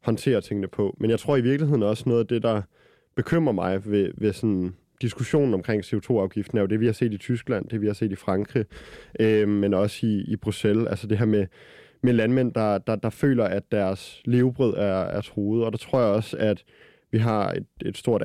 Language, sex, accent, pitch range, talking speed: Danish, male, native, 100-115 Hz, 225 wpm